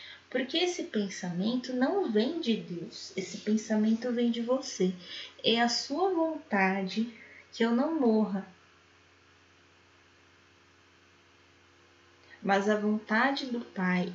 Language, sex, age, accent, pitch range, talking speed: Portuguese, female, 10-29, Brazilian, 175-225 Hz, 105 wpm